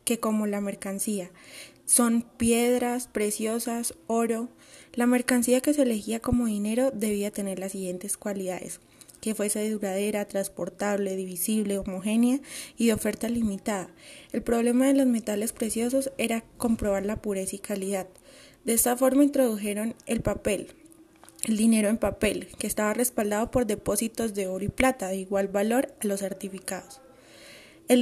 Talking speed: 150 wpm